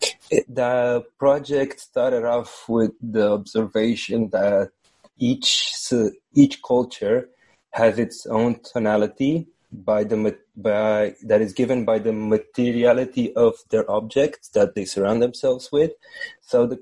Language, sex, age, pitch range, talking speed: English, male, 30-49, 110-125 Hz, 125 wpm